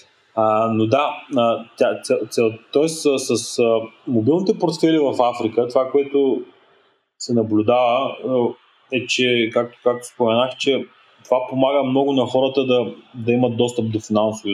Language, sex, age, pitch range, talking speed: Bulgarian, male, 20-39, 110-125 Hz, 145 wpm